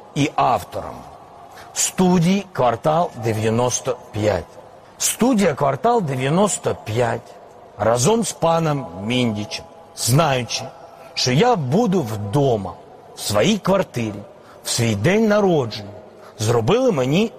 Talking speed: 90 wpm